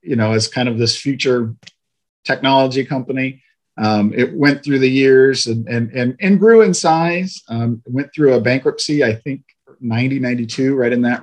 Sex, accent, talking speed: male, American, 180 wpm